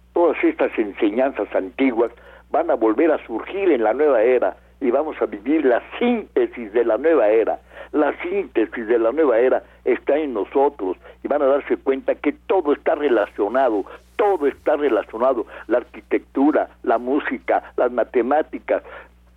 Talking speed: 155 wpm